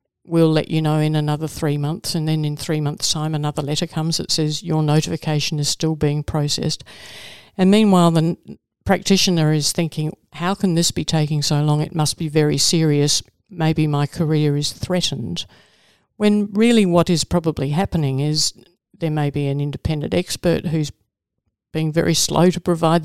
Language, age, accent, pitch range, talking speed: English, 50-69, Australian, 150-170 Hz, 175 wpm